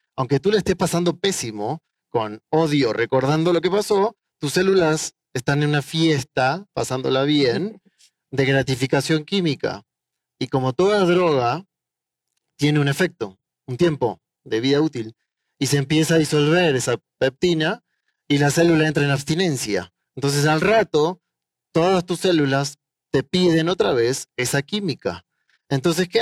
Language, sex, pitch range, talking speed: Spanish, male, 135-170 Hz, 140 wpm